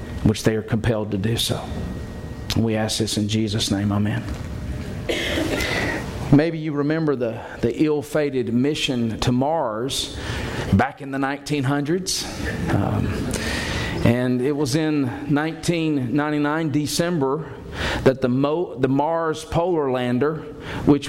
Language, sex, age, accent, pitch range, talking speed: English, male, 50-69, American, 125-155 Hz, 120 wpm